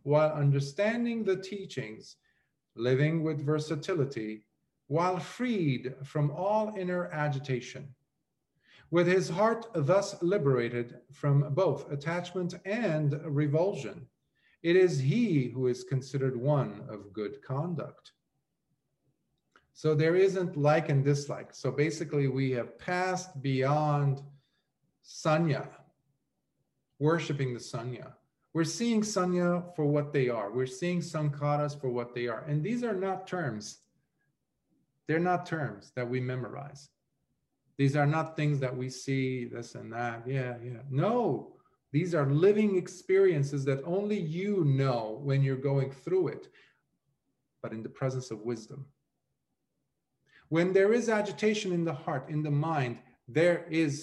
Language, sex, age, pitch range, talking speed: English, male, 40-59, 135-175 Hz, 130 wpm